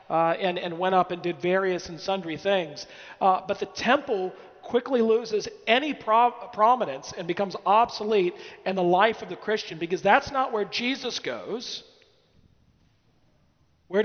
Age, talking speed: 40-59, 150 wpm